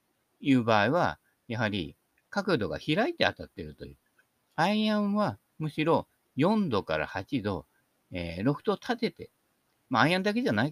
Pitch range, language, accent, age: 100-155 Hz, Japanese, native, 50-69